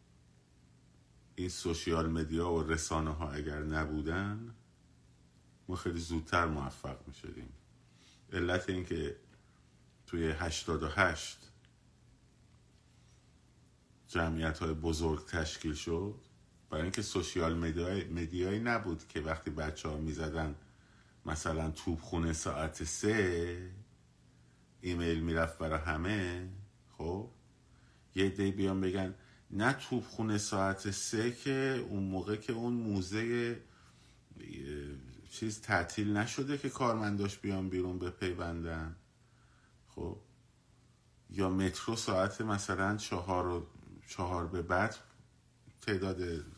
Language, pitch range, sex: Persian, 80-100 Hz, male